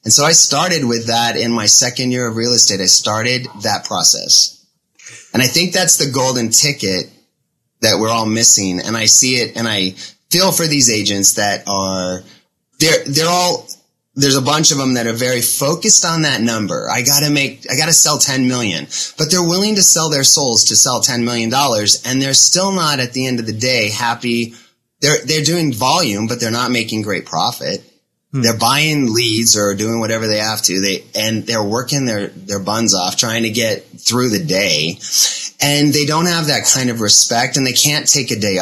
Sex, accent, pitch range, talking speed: male, American, 110-140 Hz, 210 wpm